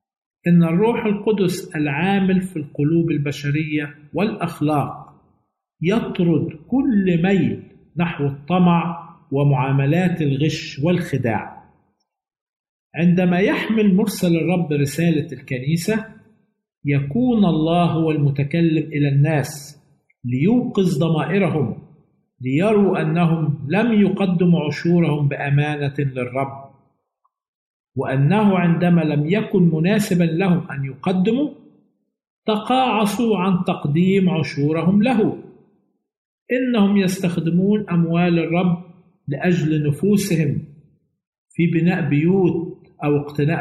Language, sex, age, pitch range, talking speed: Arabic, male, 50-69, 150-190 Hz, 85 wpm